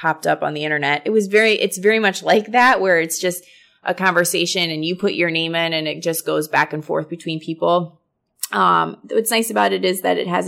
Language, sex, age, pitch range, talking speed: English, female, 20-39, 150-185 Hz, 240 wpm